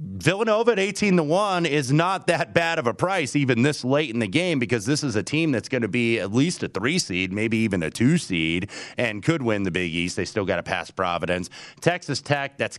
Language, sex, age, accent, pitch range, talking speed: English, male, 30-49, American, 95-125 Hz, 245 wpm